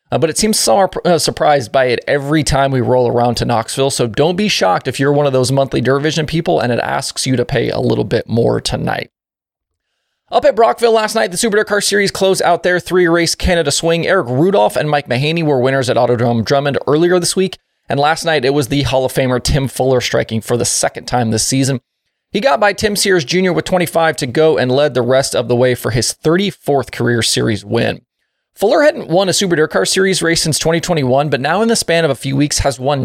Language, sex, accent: English, male, American